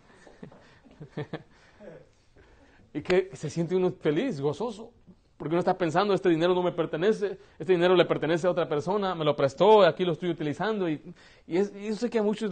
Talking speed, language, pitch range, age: 180 wpm, Spanish, 145-180 Hz, 30-49